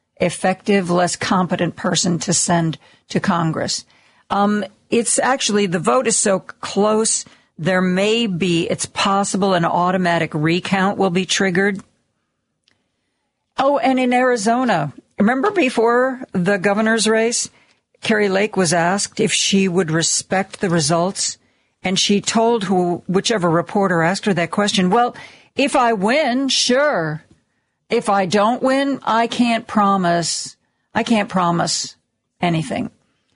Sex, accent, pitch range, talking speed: female, American, 175-230 Hz, 130 wpm